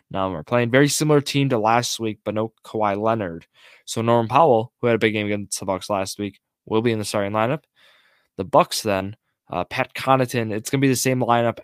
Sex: male